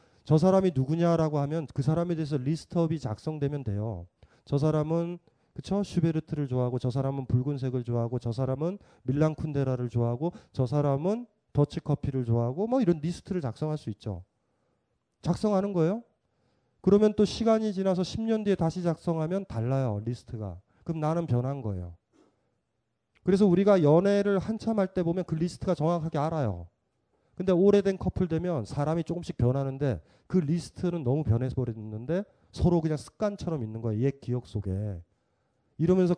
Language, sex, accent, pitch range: Korean, male, native, 125-190 Hz